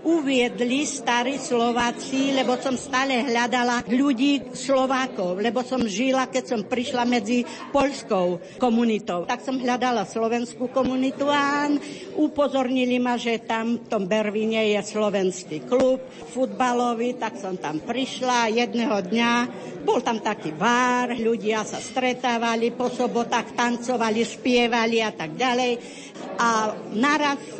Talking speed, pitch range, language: 125 wpm, 230-275 Hz, Slovak